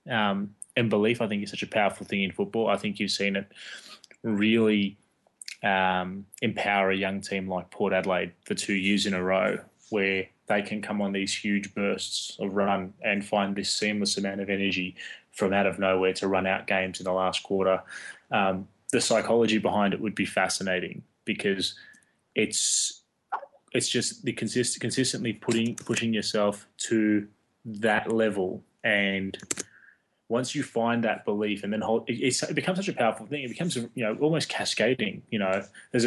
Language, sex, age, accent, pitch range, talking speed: English, male, 20-39, Australian, 100-120 Hz, 180 wpm